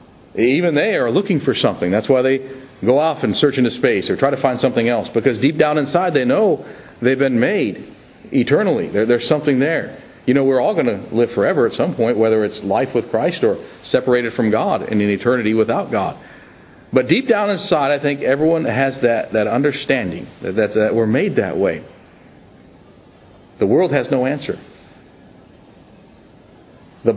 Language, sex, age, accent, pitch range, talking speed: English, male, 40-59, American, 105-140 Hz, 185 wpm